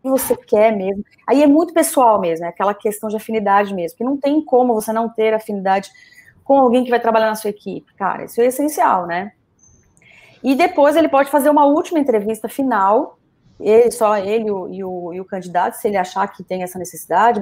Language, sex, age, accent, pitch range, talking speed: Portuguese, female, 30-49, Brazilian, 200-250 Hz, 205 wpm